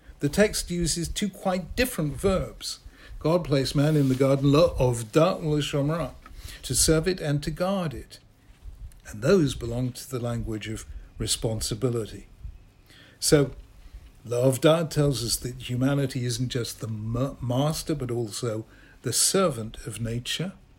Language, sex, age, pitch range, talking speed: English, male, 60-79, 115-155 Hz, 135 wpm